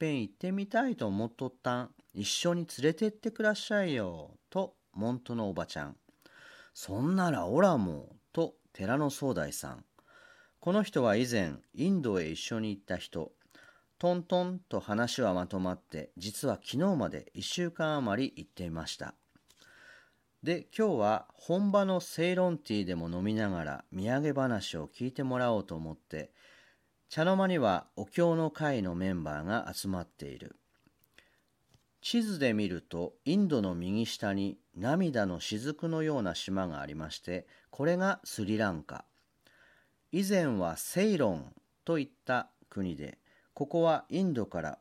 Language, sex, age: Japanese, male, 40-59